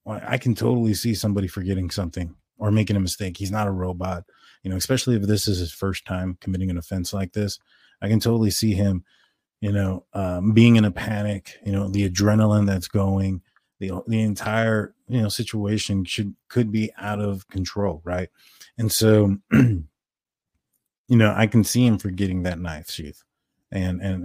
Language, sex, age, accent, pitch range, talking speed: English, male, 20-39, American, 95-110 Hz, 185 wpm